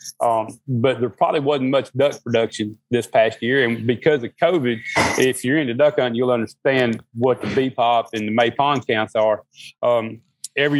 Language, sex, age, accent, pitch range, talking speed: English, male, 30-49, American, 115-135 Hz, 190 wpm